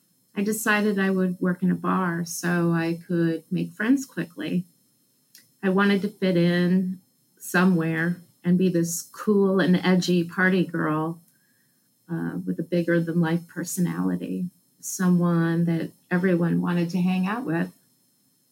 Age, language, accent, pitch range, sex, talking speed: 30-49, English, American, 170-190 Hz, female, 140 wpm